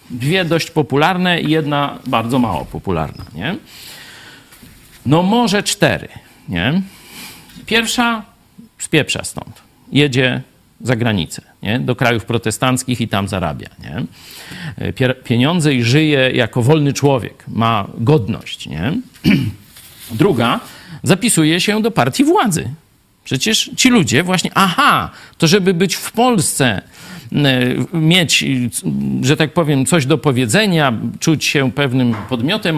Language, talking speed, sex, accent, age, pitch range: Polish, 115 wpm, male, native, 50-69, 125-170 Hz